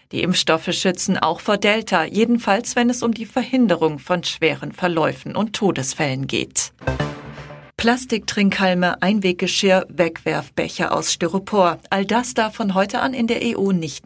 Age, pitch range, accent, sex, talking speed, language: 40-59, 170-220 Hz, German, female, 140 wpm, German